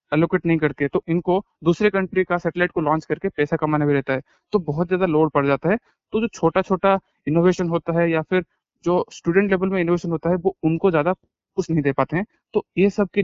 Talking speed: 240 wpm